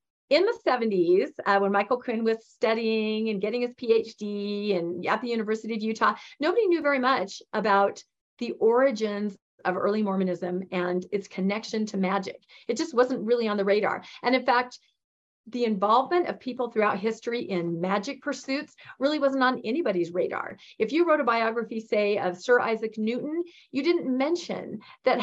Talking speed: 170 wpm